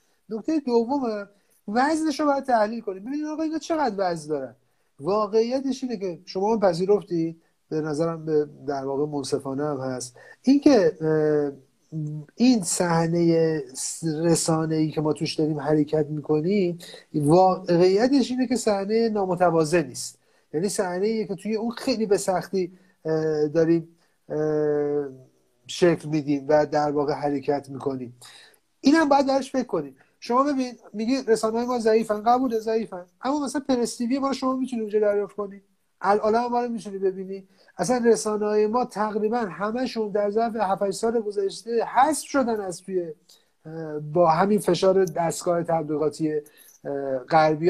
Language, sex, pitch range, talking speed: Persian, male, 160-230 Hz, 135 wpm